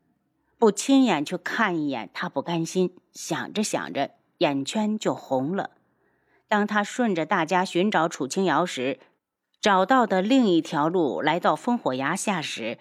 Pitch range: 175-245 Hz